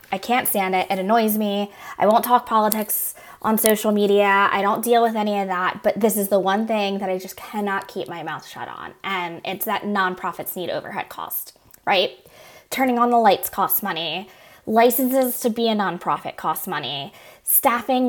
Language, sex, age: English, female, 20-39